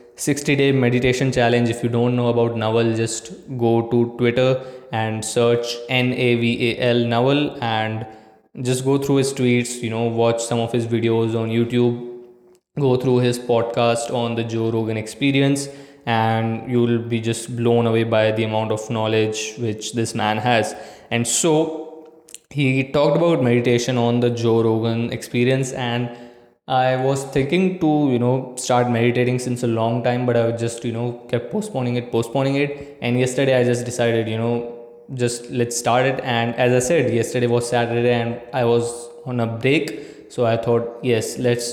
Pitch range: 115-130 Hz